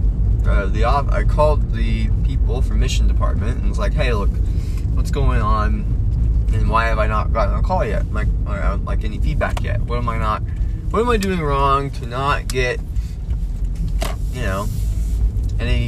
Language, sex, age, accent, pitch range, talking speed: English, male, 20-39, American, 85-115 Hz, 185 wpm